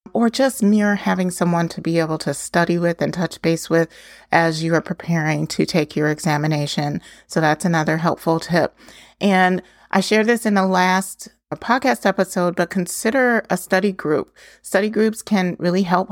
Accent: American